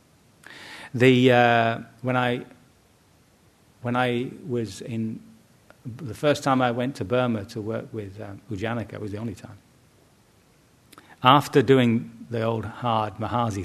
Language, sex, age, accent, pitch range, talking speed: English, male, 40-59, British, 110-130 Hz, 130 wpm